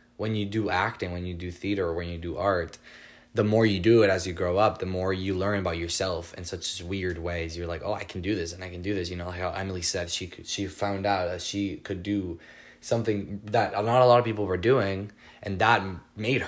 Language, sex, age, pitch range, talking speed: English, male, 20-39, 90-105 Hz, 260 wpm